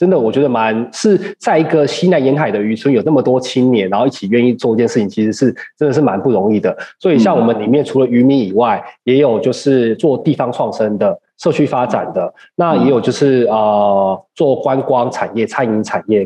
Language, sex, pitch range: Chinese, male, 115-145 Hz